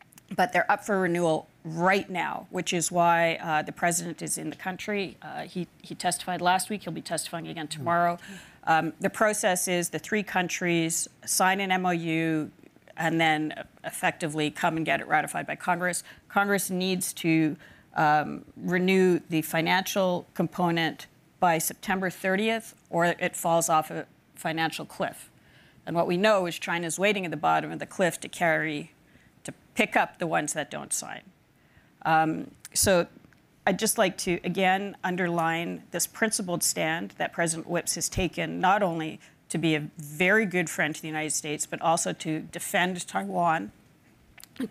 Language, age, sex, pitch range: English, 40-59, female, 160-185 Hz